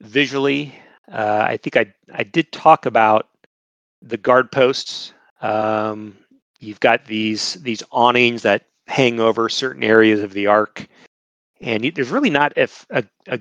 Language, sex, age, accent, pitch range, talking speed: English, male, 40-59, American, 105-120 Hz, 150 wpm